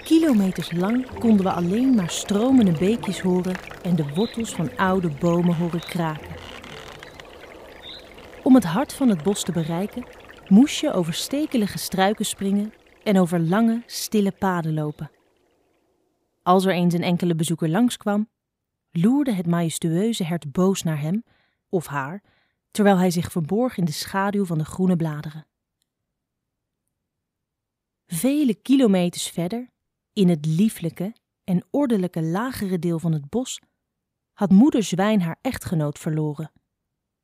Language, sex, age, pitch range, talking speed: Dutch, female, 30-49, 170-215 Hz, 135 wpm